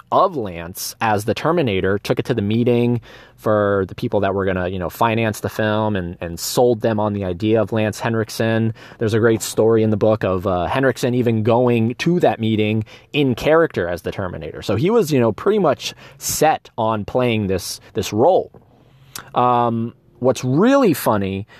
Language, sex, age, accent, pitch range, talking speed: English, male, 20-39, American, 100-130 Hz, 190 wpm